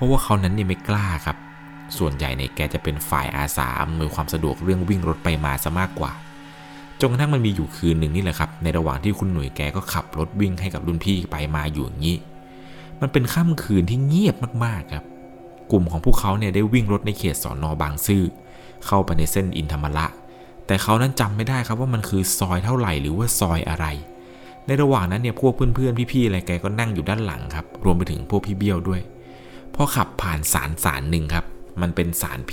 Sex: male